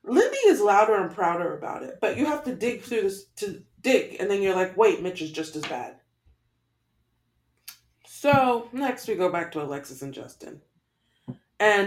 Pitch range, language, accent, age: 180-295 Hz, English, American, 30-49